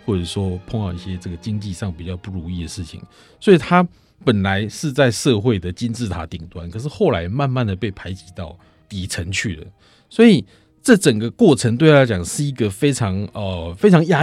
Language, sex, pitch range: Chinese, male, 95-130 Hz